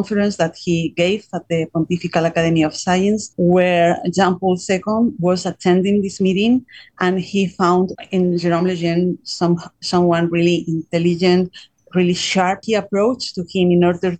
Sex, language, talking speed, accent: female, English, 150 wpm, Spanish